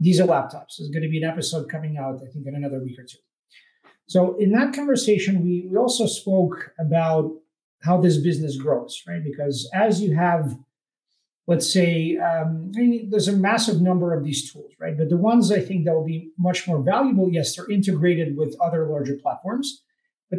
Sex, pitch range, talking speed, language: male, 155-190 Hz, 195 wpm, English